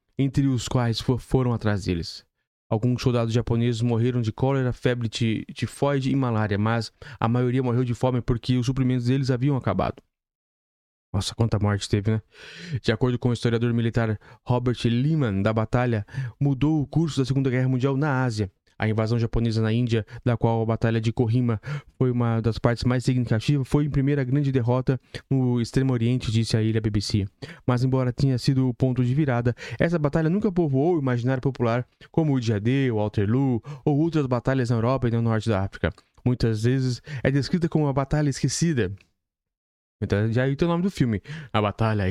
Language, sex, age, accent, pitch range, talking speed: Portuguese, male, 20-39, Brazilian, 115-135 Hz, 190 wpm